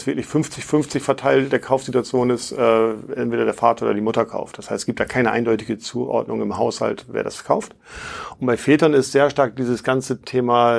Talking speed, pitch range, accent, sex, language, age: 200 wpm, 115-135 Hz, German, male, German, 50-69